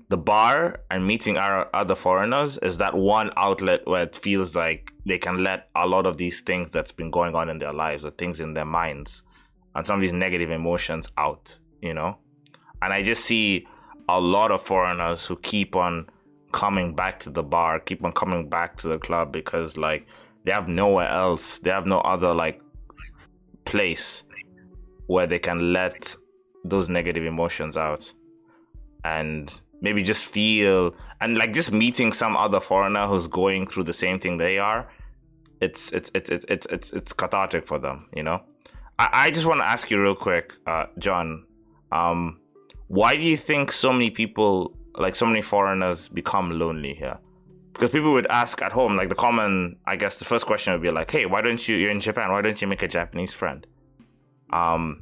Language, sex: English, male